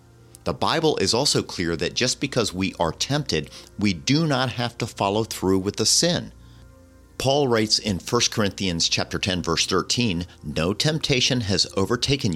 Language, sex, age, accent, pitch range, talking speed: English, male, 50-69, American, 90-120 Hz, 160 wpm